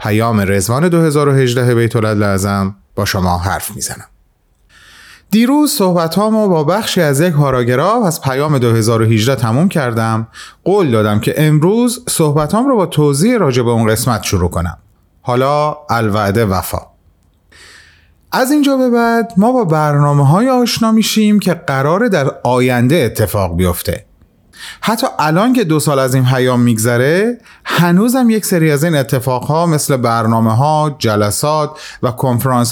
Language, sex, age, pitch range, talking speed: Persian, male, 30-49, 105-175 Hz, 145 wpm